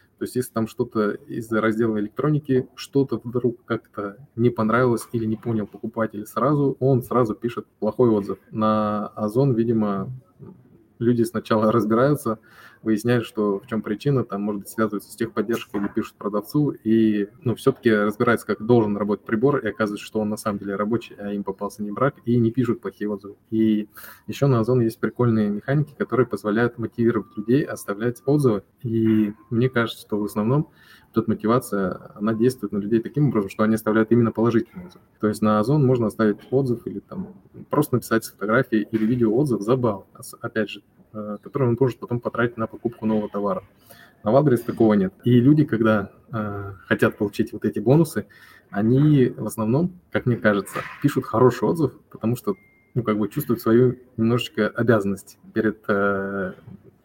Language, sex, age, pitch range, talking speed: Russian, male, 20-39, 105-120 Hz, 170 wpm